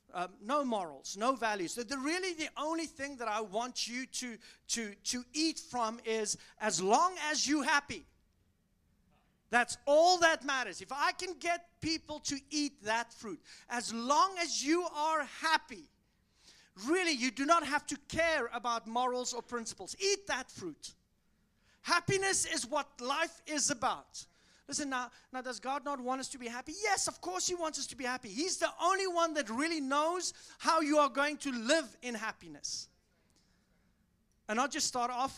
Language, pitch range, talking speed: English, 225-305 Hz, 180 wpm